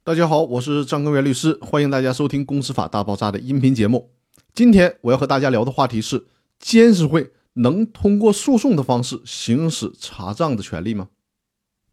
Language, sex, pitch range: Chinese, male, 115-175 Hz